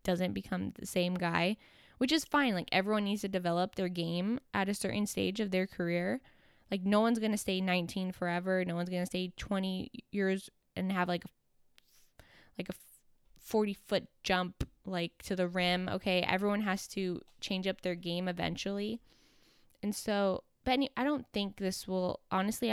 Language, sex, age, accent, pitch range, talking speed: English, female, 10-29, American, 185-215 Hz, 175 wpm